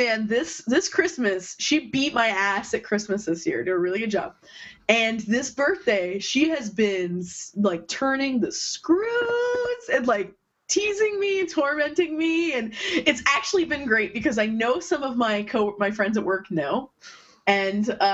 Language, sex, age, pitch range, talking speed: English, female, 20-39, 210-330 Hz, 170 wpm